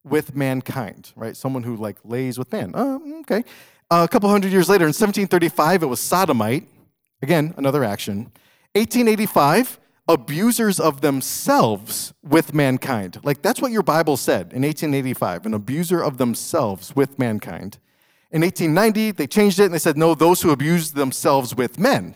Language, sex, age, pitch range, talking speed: English, male, 40-59, 135-205 Hz, 160 wpm